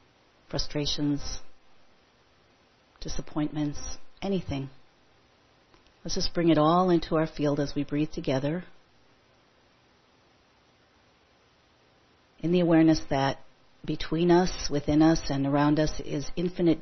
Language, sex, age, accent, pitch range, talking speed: English, female, 40-59, American, 145-170 Hz, 100 wpm